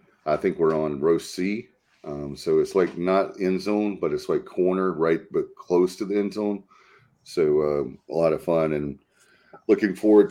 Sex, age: male, 30-49